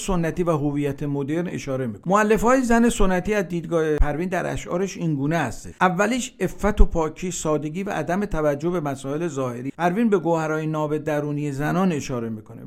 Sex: male